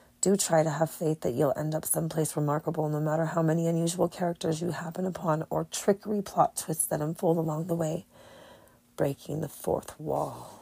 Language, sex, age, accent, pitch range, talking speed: English, female, 30-49, American, 155-175 Hz, 185 wpm